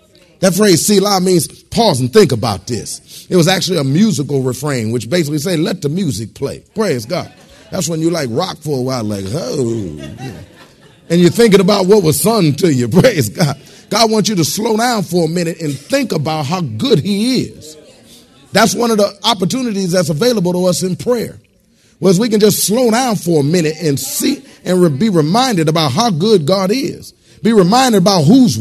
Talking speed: 195 wpm